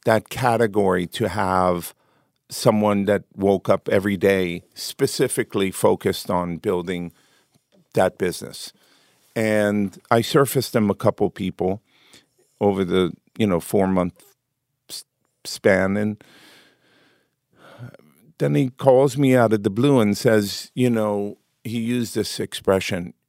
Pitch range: 90-115 Hz